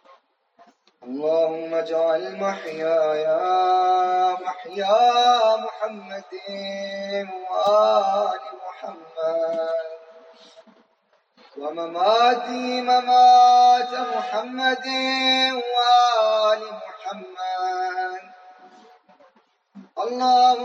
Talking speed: 40 wpm